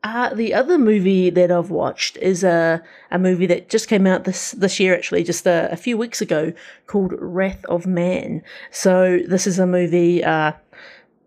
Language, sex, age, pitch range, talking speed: English, female, 30-49, 175-210 Hz, 190 wpm